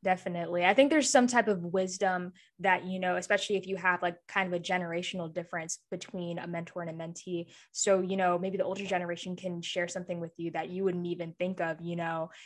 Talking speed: 225 wpm